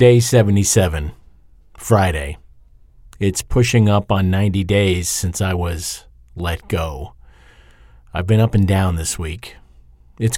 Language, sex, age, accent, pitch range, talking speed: English, male, 50-69, American, 85-110 Hz, 125 wpm